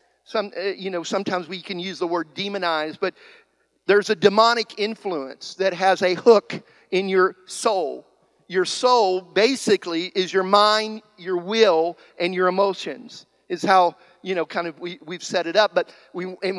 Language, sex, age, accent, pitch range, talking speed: English, male, 50-69, American, 185-220 Hz, 170 wpm